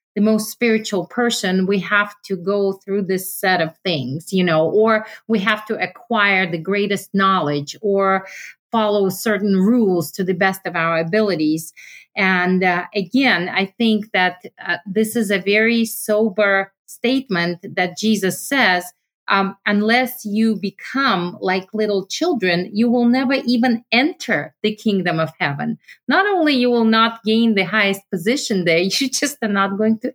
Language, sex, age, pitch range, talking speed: English, female, 40-59, 170-215 Hz, 160 wpm